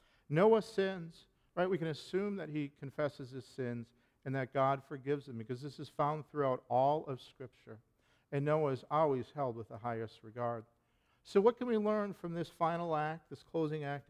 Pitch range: 125-175 Hz